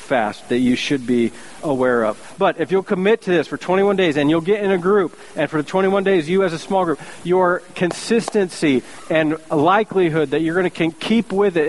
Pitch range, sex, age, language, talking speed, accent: 185-260 Hz, male, 40-59, English, 220 wpm, American